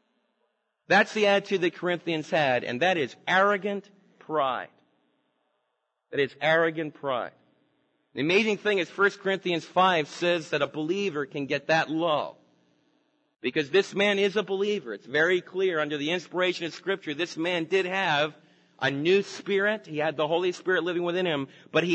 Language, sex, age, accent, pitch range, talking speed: English, male, 40-59, American, 160-200 Hz, 165 wpm